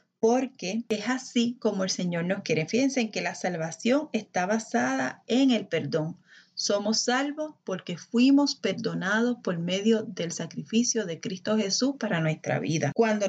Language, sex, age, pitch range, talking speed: Spanish, female, 30-49, 180-235 Hz, 155 wpm